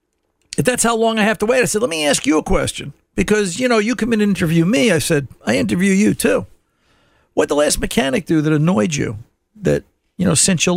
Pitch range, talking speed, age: 160-225 Hz, 245 wpm, 50-69